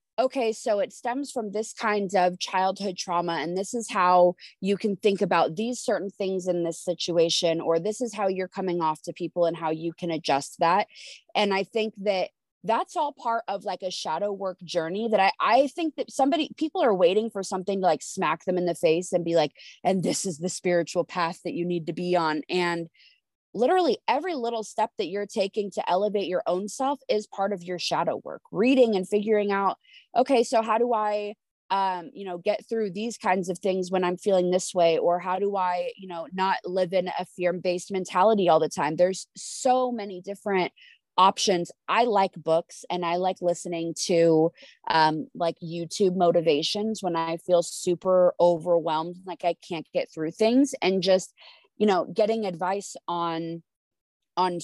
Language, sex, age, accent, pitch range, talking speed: English, female, 20-39, American, 175-215 Hz, 195 wpm